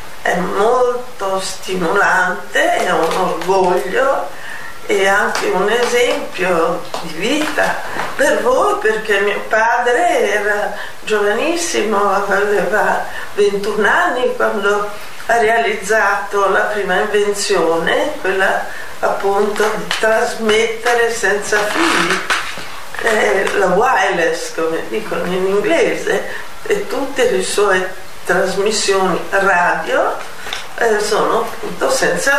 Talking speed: 95 wpm